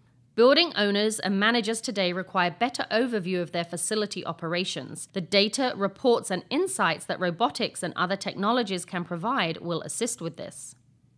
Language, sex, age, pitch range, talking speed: English, female, 40-59, 170-225 Hz, 150 wpm